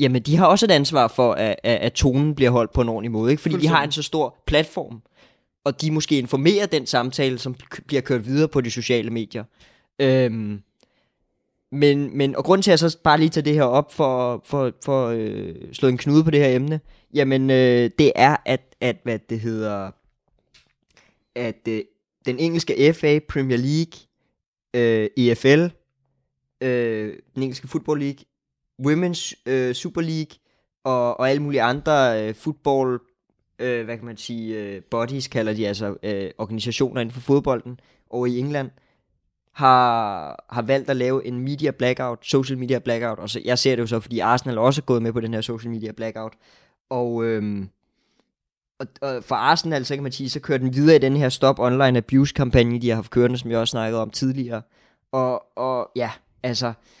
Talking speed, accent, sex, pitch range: 185 wpm, native, male, 115-140 Hz